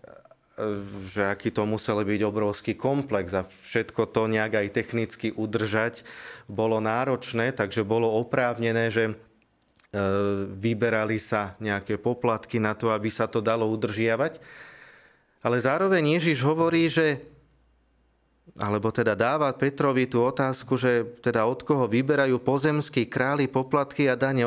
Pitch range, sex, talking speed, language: 105-135 Hz, male, 130 wpm, Slovak